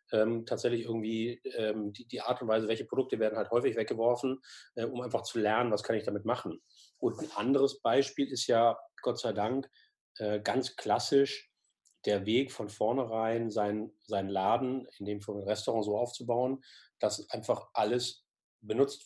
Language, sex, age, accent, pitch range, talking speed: German, male, 30-49, German, 105-130 Hz, 170 wpm